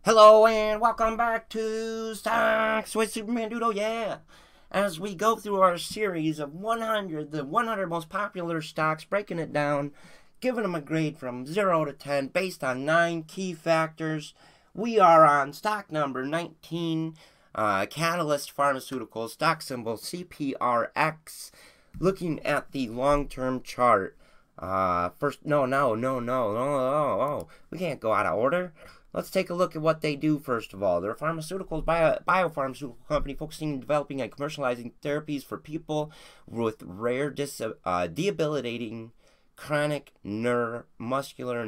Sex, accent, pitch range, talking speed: male, American, 125-180 Hz, 155 wpm